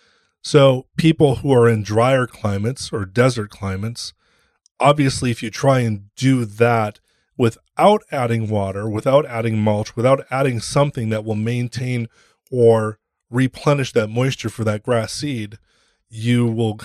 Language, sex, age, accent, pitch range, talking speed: English, male, 30-49, American, 105-130 Hz, 140 wpm